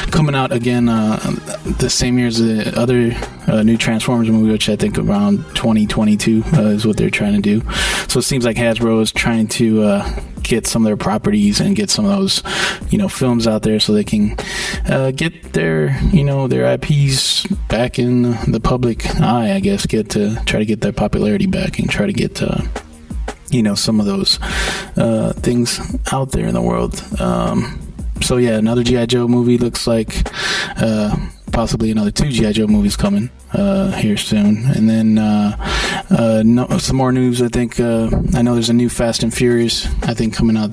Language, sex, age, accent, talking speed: English, male, 20-39, American, 200 wpm